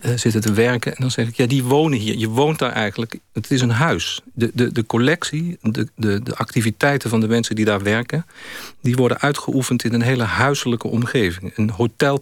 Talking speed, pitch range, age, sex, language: 210 wpm, 110-130 Hz, 50-69, male, Dutch